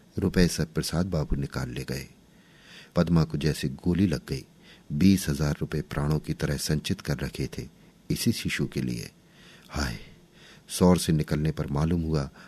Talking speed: 165 wpm